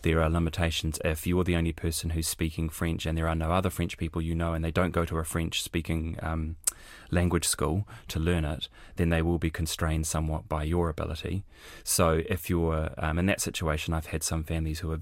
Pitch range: 80-90 Hz